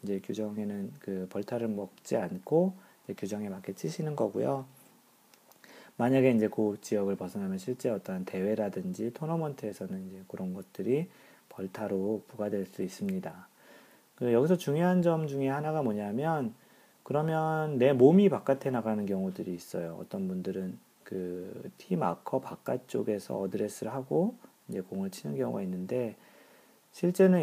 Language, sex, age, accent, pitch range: Korean, male, 40-59, native, 100-160 Hz